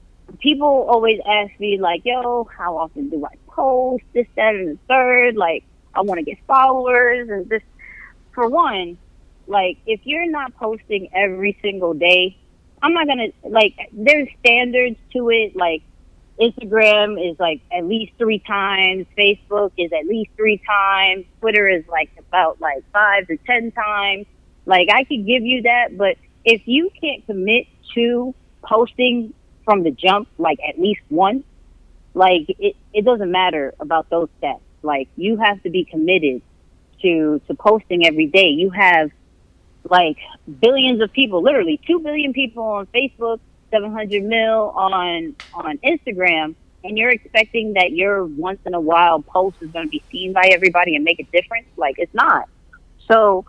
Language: English